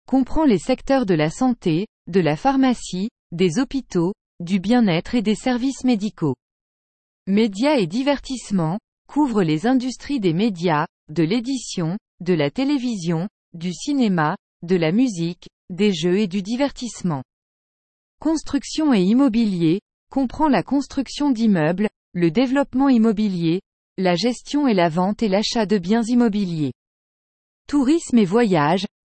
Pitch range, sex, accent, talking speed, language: 180-250 Hz, female, French, 130 wpm, English